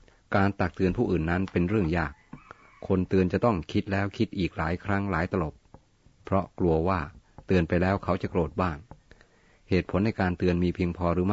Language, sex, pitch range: Thai, male, 85-100 Hz